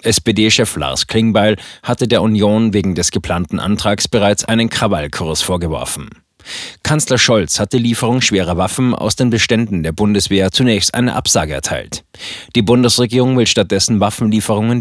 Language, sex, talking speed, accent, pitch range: German, male, 140 wpm, German, 95-120 Hz